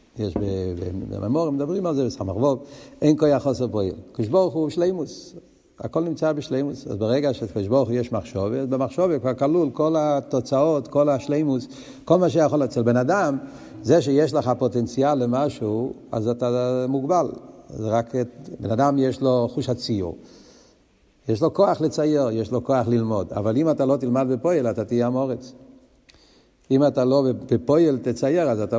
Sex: male